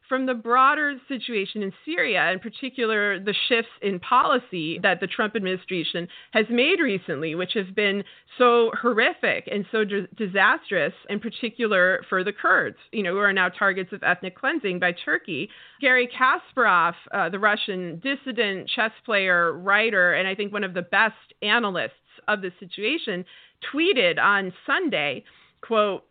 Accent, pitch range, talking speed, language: American, 190-250 Hz, 155 wpm, English